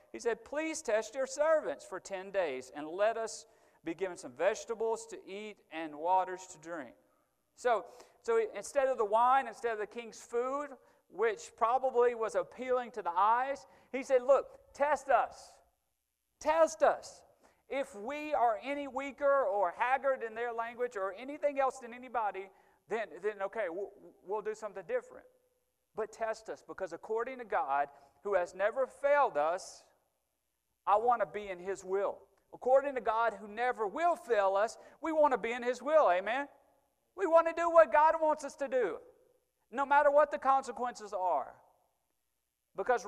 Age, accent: 40-59, American